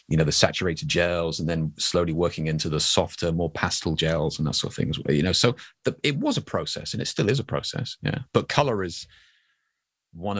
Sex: male